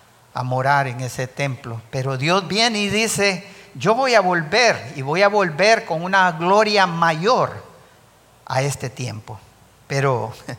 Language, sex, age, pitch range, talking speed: English, male, 50-69, 135-190 Hz, 145 wpm